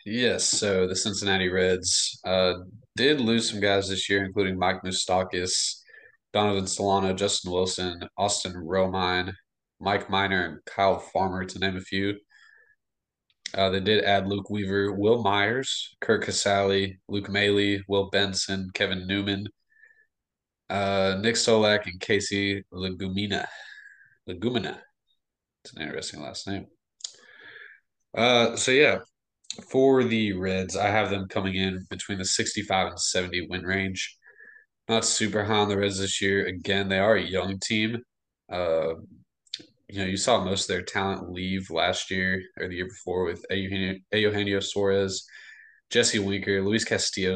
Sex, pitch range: male, 95-105 Hz